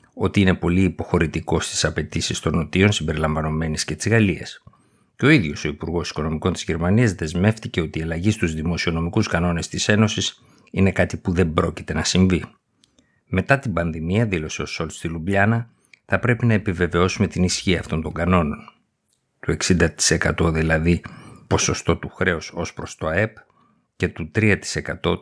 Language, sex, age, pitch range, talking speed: Greek, male, 50-69, 85-105 Hz, 155 wpm